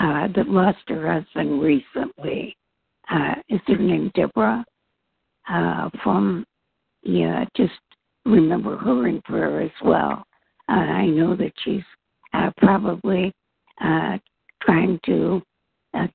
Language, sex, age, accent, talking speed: English, female, 60-79, American, 115 wpm